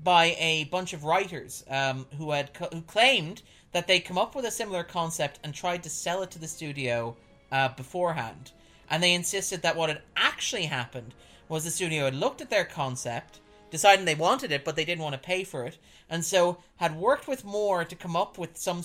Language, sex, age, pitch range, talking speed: English, male, 30-49, 140-180 Hz, 215 wpm